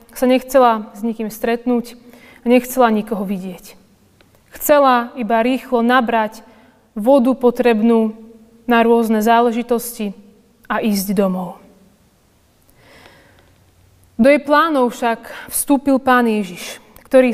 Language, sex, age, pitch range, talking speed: Slovak, female, 30-49, 220-265 Hz, 95 wpm